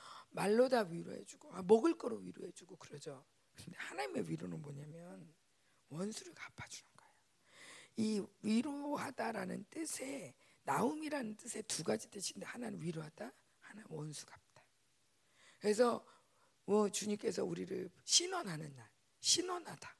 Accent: native